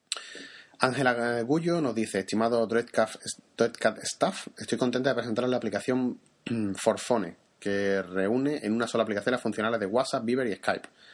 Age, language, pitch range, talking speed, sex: 30-49, Spanish, 100-125 Hz, 145 wpm, male